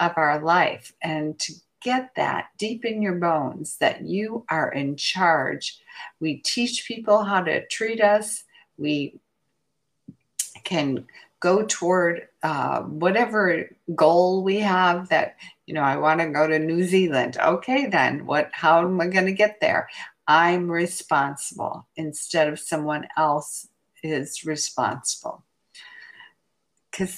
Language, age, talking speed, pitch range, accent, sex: English, 50-69, 130 wpm, 150-185 Hz, American, female